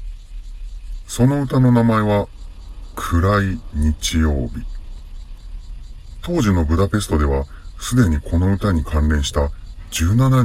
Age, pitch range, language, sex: 40-59, 75-95 Hz, Japanese, female